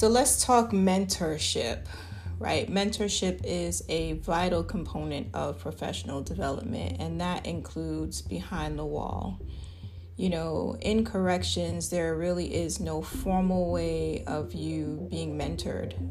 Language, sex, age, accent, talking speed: English, female, 30-49, American, 125 wpm